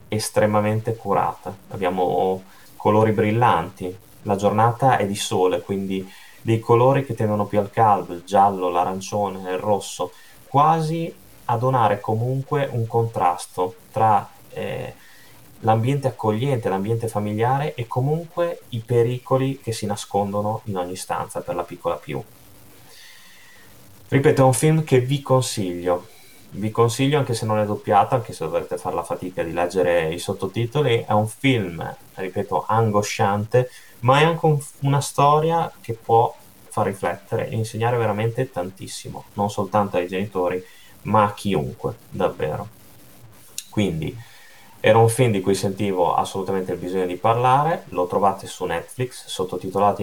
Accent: native